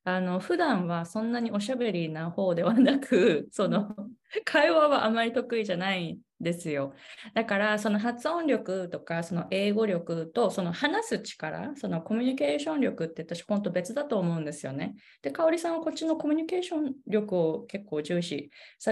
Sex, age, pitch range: female, 20-39, 175-260 Hz